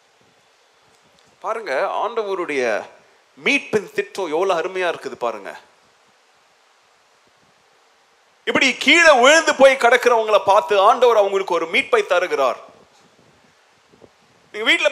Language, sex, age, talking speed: Tamil, male, 30-49, 50 wpm